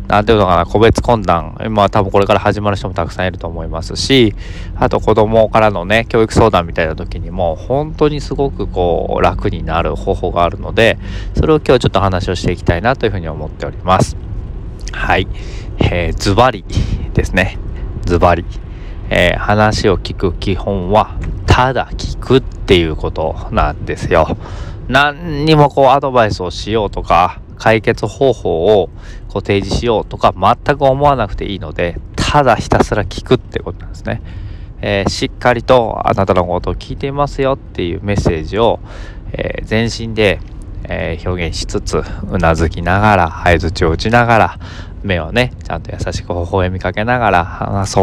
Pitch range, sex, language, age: 90-115 Hz, male, Japanese, 20-39